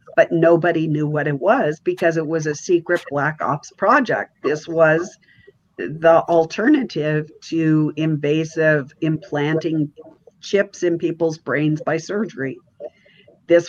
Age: 50-69